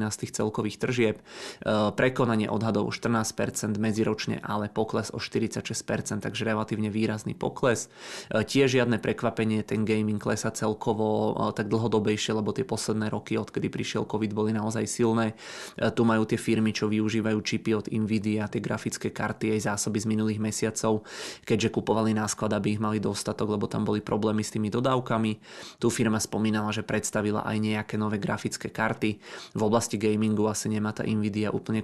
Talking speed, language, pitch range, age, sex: 160 wpm, Czech, 105-110 Hz, 20-39, male